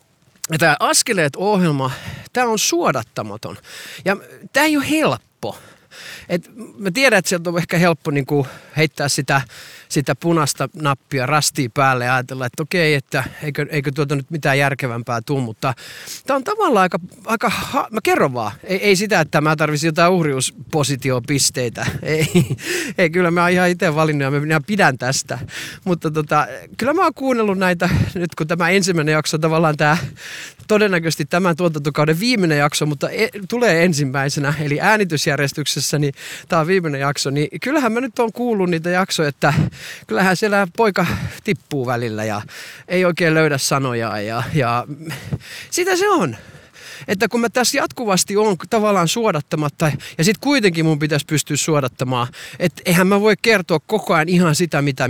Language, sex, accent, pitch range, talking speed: Finnish, male, native, 145-195 Hz, 155 wpm